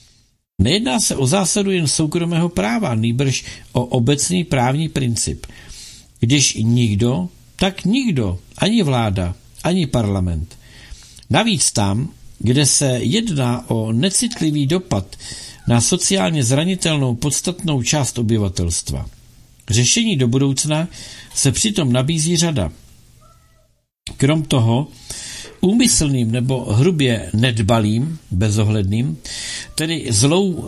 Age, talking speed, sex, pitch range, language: 60-79, 100 wpm, male, 110-155 Hz, Czech